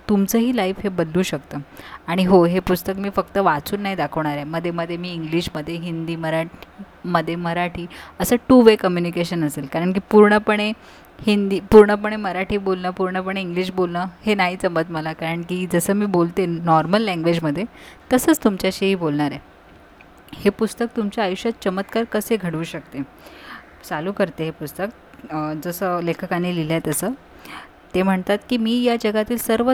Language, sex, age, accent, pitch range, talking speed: Marathi, female, 20-39, native, 170-210 Hz, 135 wpm